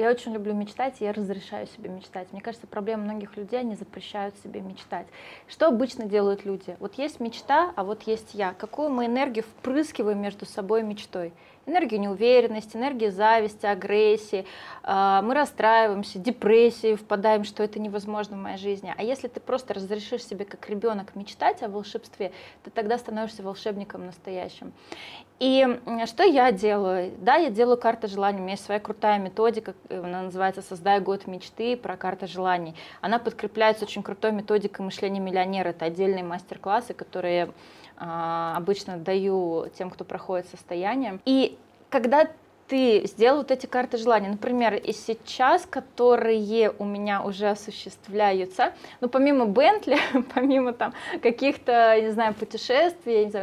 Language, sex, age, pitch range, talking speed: Russian, female, 20-39, 195-245 Hz, 150 wpm